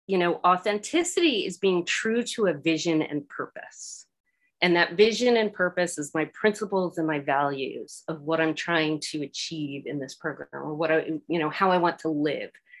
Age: 30-49